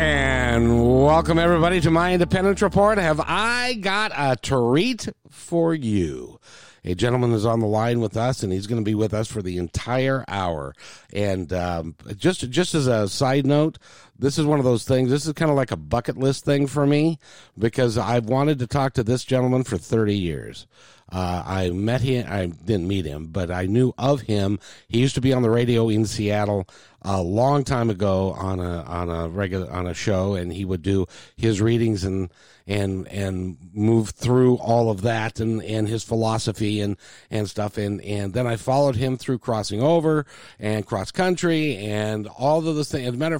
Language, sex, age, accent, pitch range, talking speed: English, male, 50-69, American, 100-140 Hz, 200 wpm